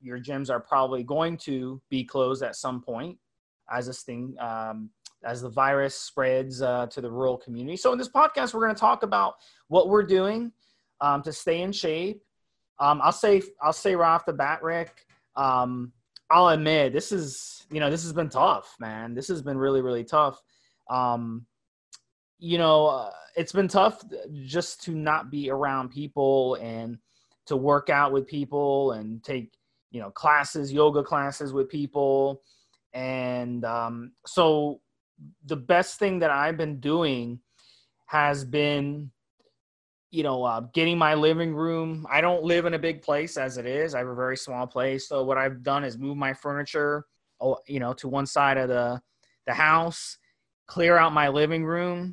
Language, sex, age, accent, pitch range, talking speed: English, male, 20-39, American, 130-160 Hz, 175 wpm